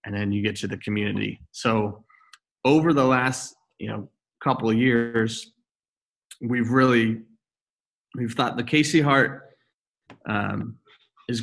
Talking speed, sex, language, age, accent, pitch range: 130 wpm, male, English, 30-49, American, 105-125 Hz